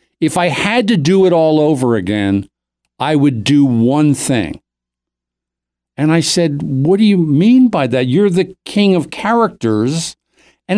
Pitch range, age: 125-185 Hz, 50-69